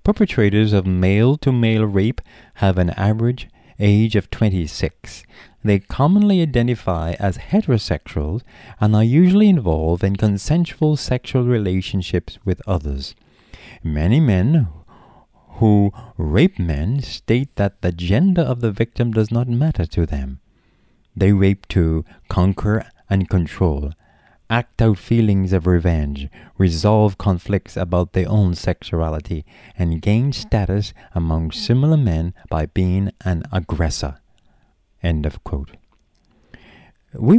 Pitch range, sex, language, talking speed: 85-120 Hz, male, English, 115 wpm